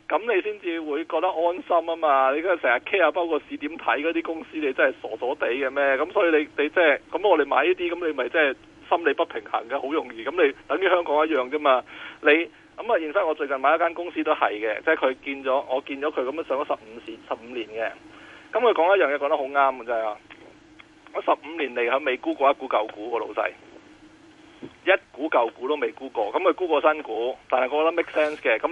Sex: male